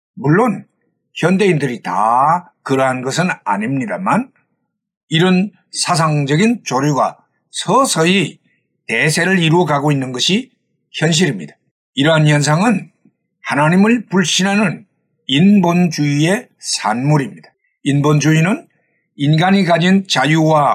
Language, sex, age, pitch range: Korean, male, 60-79, 145-195 Hz